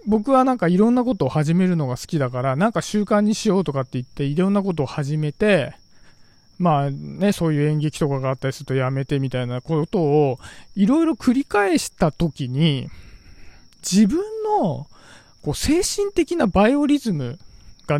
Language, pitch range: Japanese, 135-220 Hz